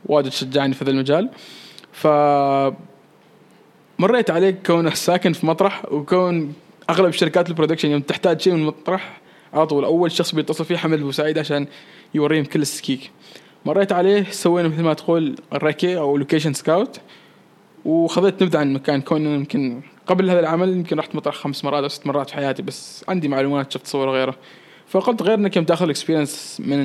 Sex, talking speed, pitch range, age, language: male, 160 wpm, 145-185 Hz, 20-39, Arabic